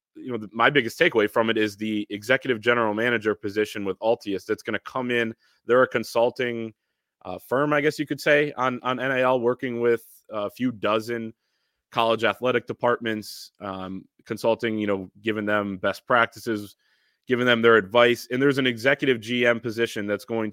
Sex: male